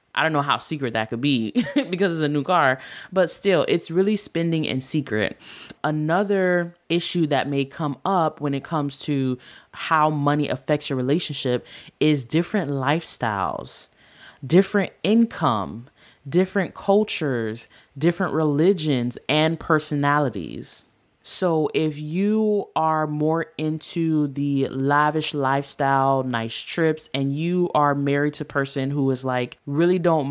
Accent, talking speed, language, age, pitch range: American, 135 wpm, English, 20-39, 135-160 Hz